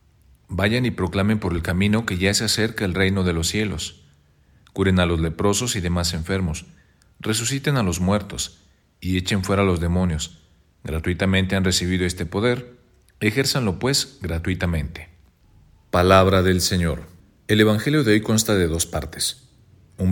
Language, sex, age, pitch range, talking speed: Spanish, male, 40-59, 90-110 Hz, 155 wpm